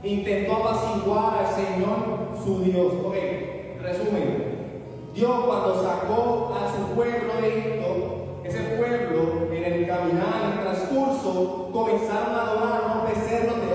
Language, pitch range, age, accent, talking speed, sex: Spanish, 160-235 Hz, 20-39, American, 130 wpm, male